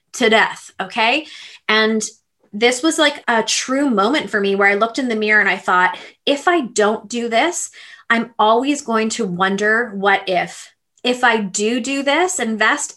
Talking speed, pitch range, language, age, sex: 180 wpm, 205-250 Hz, English, 20-39, female